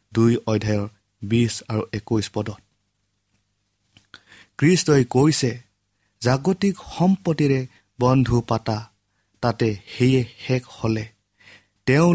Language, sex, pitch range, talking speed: English, male, 105-130 Hz, 90 wpm